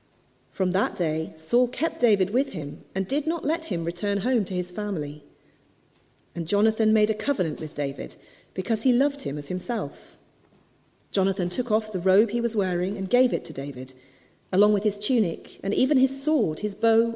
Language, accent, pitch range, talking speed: English, British, 175-255 Hz, 190 wpm